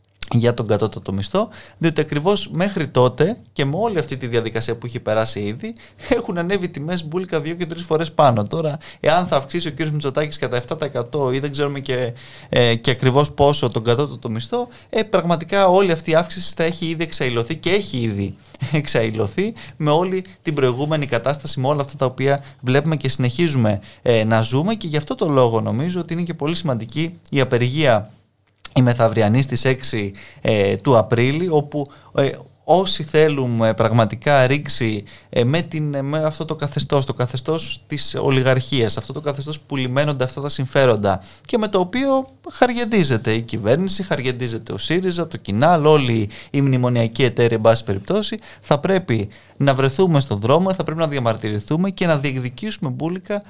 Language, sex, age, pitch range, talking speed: Greek, male, 20-39, 120-160 Hz, 175 wpm